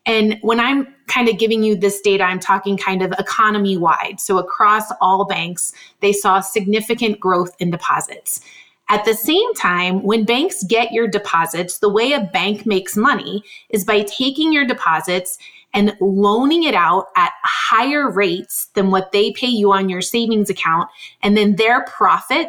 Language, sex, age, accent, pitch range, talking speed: English, female, 30-49, American, 190-225 Hz, 170 wpm